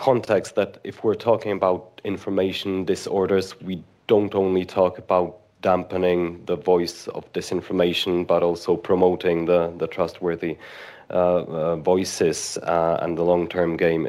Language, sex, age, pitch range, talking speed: English, male, 30-49, 85-95 Hz, 135 wpm